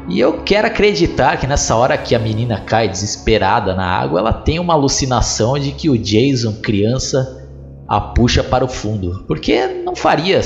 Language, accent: Portuguese, Brazilian